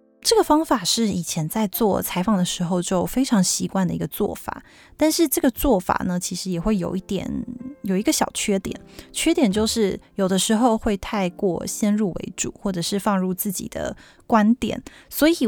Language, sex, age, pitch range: Chinese, female, 20-39, 180-225 Hz